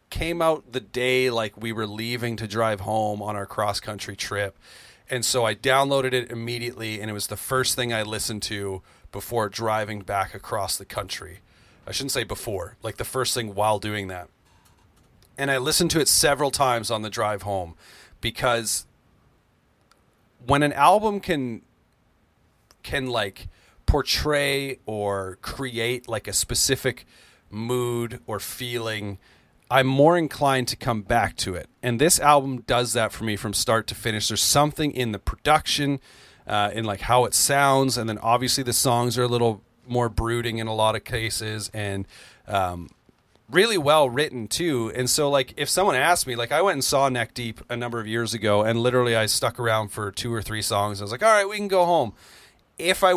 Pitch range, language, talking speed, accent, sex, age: 105-135 Hz, English, 185 wpm, American, male, 30-49